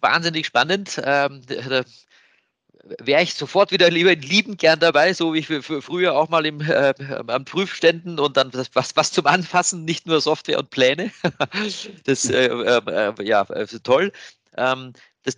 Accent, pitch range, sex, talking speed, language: German, 125-165 Hz, male, 160 wpm, German